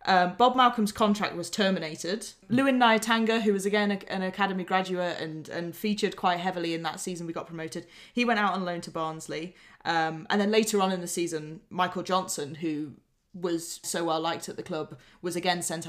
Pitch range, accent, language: 170-220 Hz, British, English